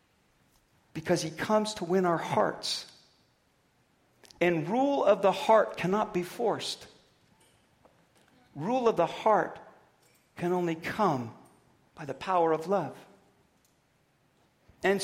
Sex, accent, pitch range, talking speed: male, American, 175-225 Hz, 110 wpm